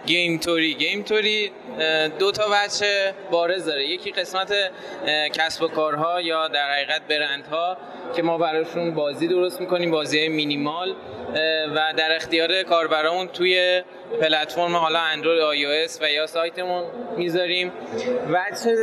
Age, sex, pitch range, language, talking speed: 20-39, male, 160-190 Hz, Persian, 130 wpm